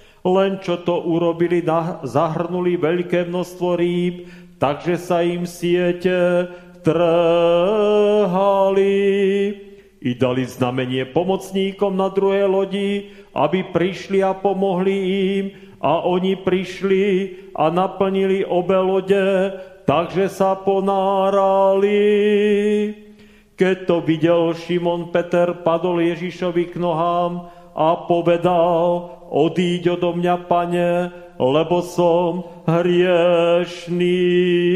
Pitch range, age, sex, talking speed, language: 175-195 Hz, 40-59, male, 90 wpm, Slovak